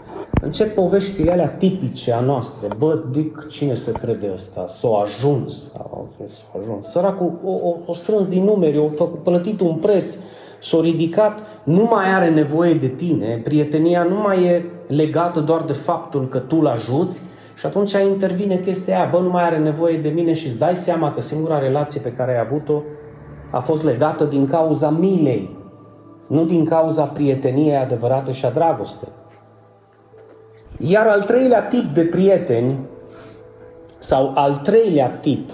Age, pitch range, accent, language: 30-49, 140-175 Hz, native, Romanian